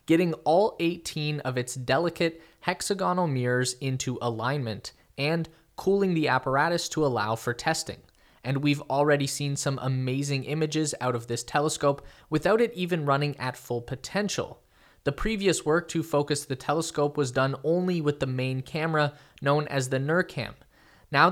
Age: 20-39